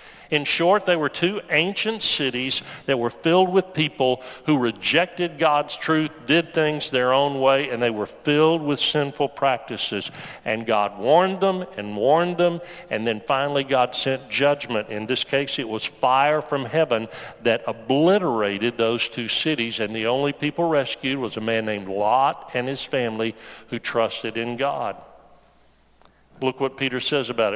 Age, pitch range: 50-69, 120-160 Hz